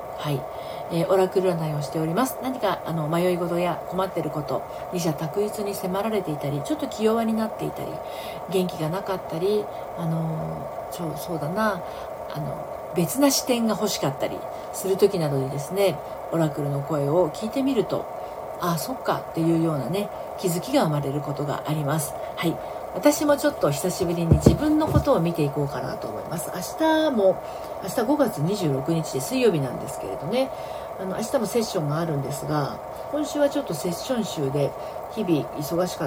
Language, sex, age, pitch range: Japanese, female, 40-59, 155-215 Hz